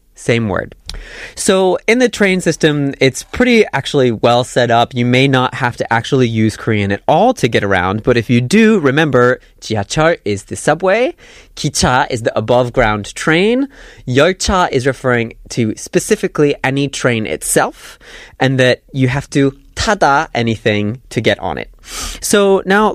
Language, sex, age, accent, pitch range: Korean, male, 20-39, American, 115-155 Hz